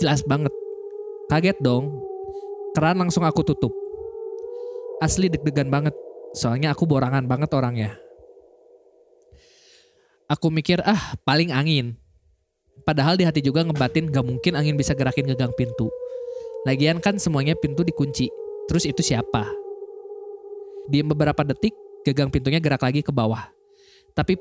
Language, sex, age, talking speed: Indonesian, male, 20-39, 125 wpm